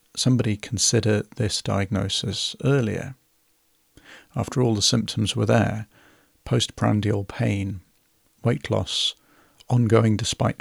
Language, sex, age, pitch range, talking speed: English, male, 40-59, 105-125 Hz, 95 wpm